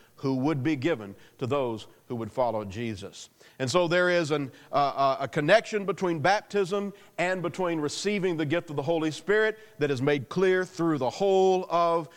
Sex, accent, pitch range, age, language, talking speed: male, American, 140-190 Hz, 40-59, English, 180 wpm